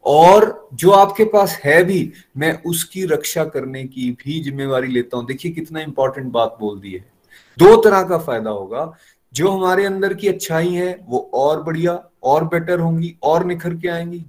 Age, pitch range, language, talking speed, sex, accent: 30-49, 125-180 Hz, Hindi, 175 wpm, male, native